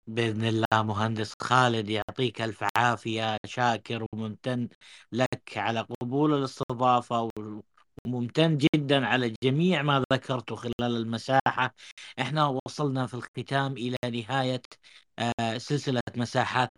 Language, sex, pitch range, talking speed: Arabic, male, 120-145 Hz, 105 wpm